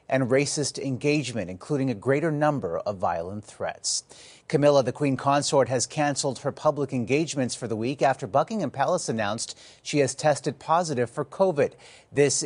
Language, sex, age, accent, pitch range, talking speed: English, male, 30-49, American, 120-150 Hz, 160 wpm